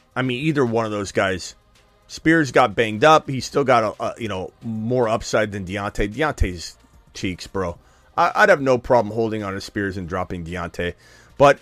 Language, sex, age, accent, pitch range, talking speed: English, male, 30-49, American, 100-125 Hz, 195 wpm